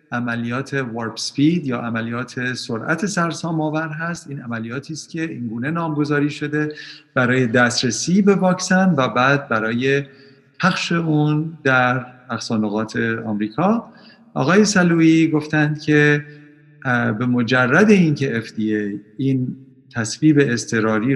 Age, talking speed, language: 50-69, 110 wpm, Persian